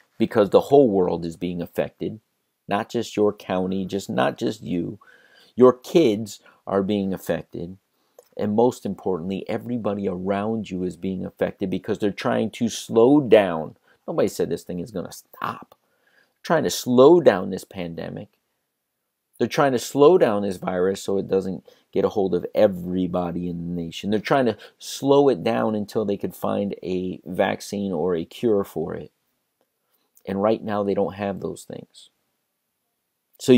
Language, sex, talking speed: English, male, 170 wpm